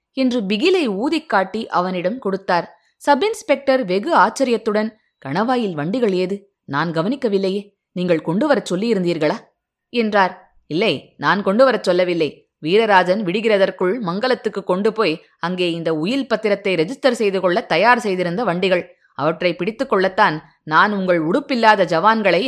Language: Tamil